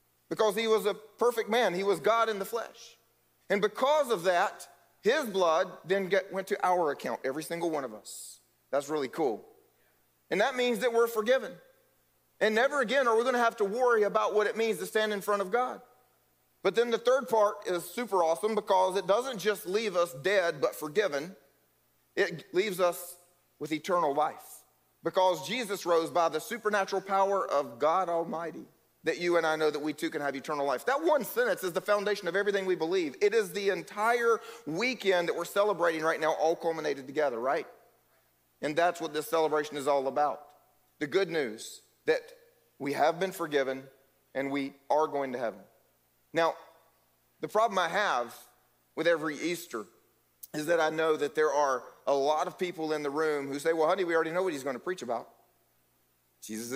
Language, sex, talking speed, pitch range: English, male, 190 wpm, 155-215 Hz